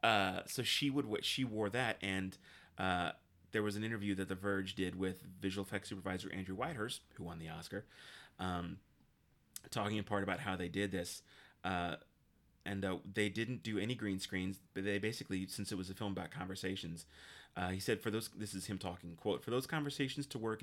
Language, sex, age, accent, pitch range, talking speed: English, male, 30-49, American, 95-110 Hz, 205 wpm